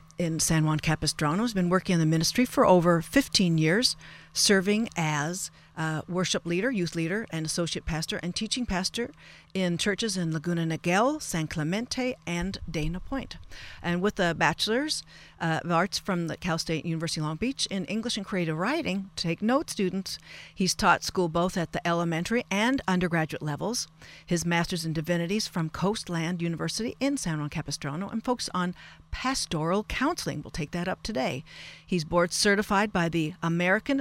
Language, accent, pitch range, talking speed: English, American, 165-210 Hz, 170 wpm